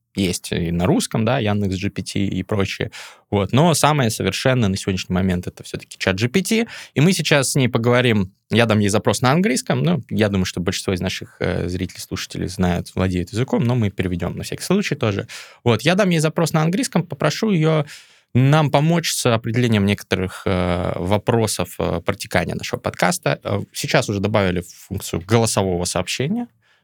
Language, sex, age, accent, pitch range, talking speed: Russian, male, 20-39, native, 100-145 Hz, 175 wpm